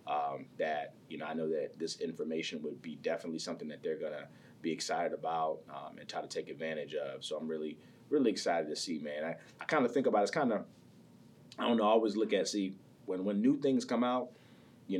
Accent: American